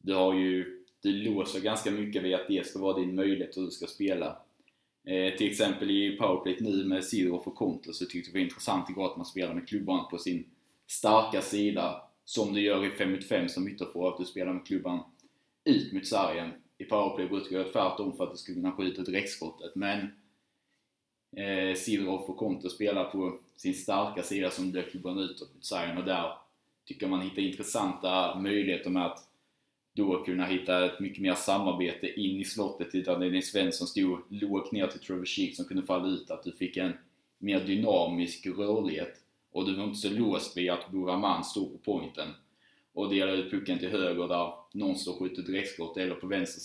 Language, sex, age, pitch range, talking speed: Swedish, male, 20-39, 90-100 Hz, 205 wpm